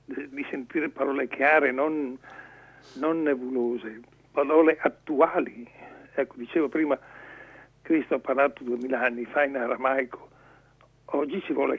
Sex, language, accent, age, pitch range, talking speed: male, Italian, native, 60-79, 130-160 Hz, 115 wpm